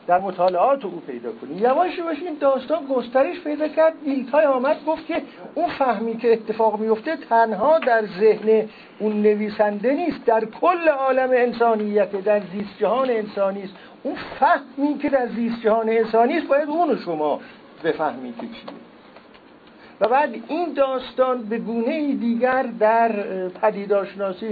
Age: 50-69